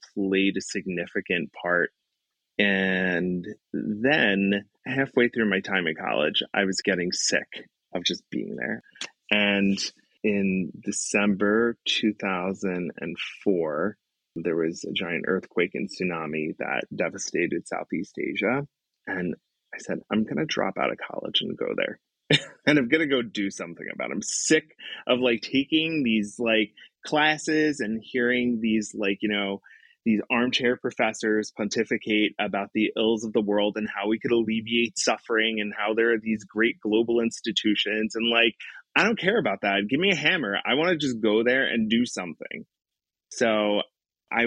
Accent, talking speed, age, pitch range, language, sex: American, 155 wpm, 30-49, 100-120 Hz, English, male